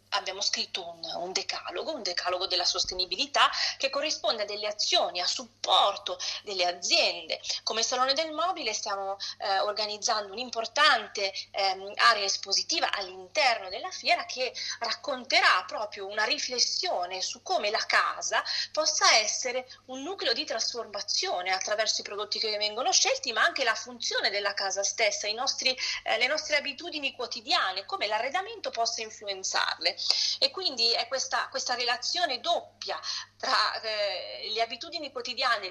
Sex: female